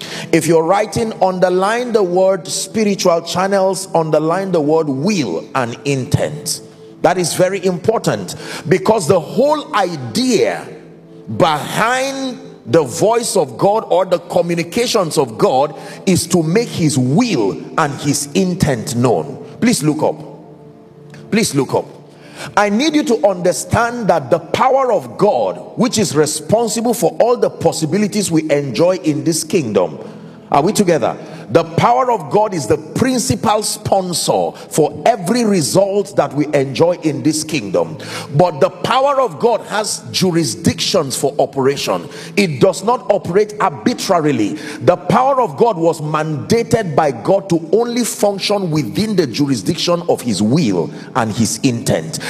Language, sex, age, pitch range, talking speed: English, male, 50-69, 160-220 Hz, 140 wpm